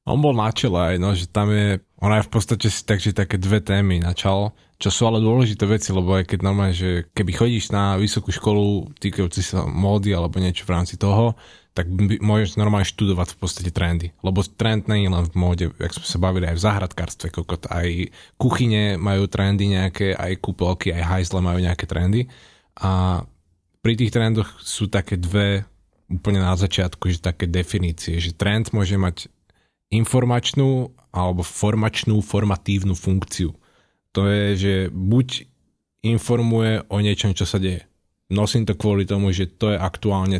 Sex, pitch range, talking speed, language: male, 90-105 Hz, 170 wpm, Slovak